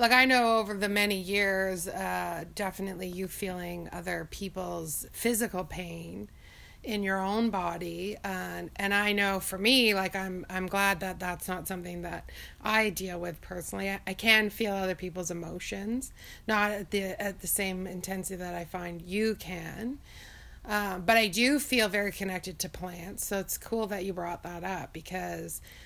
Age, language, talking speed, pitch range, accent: 30-49, English, 185 wpm, 180-205 Hz, American